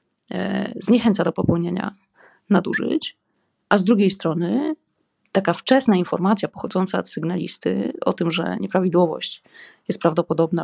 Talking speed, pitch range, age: 115 wpm, 170-215 Hz, 20-39